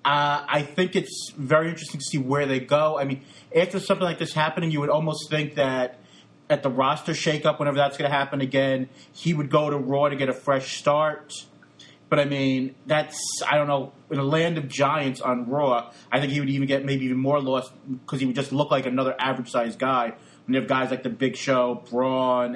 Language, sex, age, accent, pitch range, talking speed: English, male, 30-49, American, 135-170 Hz, 225 wpm